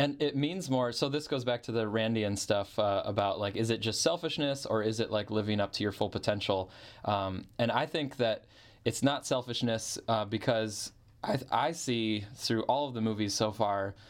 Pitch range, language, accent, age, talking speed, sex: 105-120 Hz, English, American, 20-39, 210 wpm, male